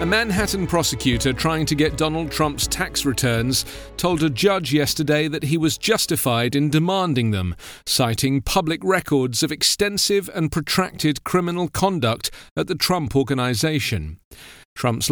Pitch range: 125-170 Hz